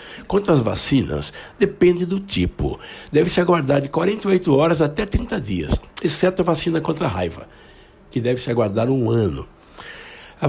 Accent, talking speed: Brazilian, 150 wpm